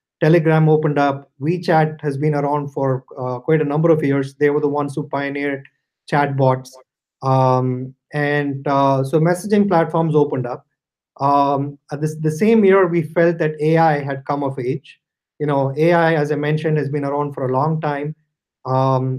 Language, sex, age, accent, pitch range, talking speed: English, male, 30-49, Indian, 140-160 Hz, 180 wpm